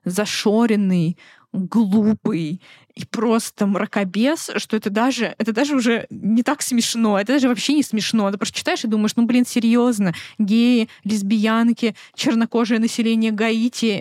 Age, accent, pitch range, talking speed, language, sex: 20-39, native, 205-245 Hz, 135 wpm, Russian, female